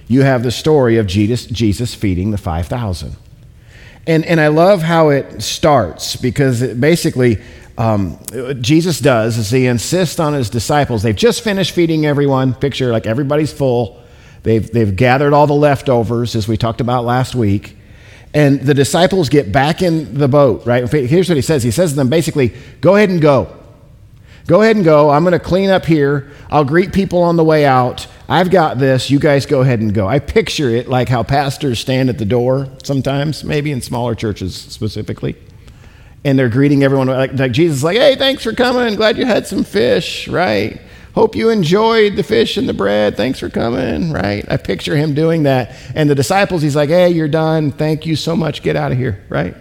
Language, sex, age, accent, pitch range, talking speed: English, male, 50-69, American, 120-165 Hz, 200 wpm